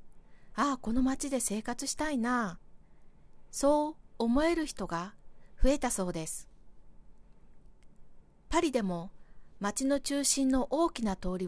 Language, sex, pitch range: Japanese, female, 180-265 Hz